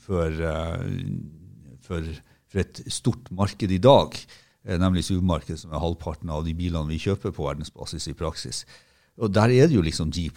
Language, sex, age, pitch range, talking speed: English, male, 60-79, 80-115 Hz, 175 wpm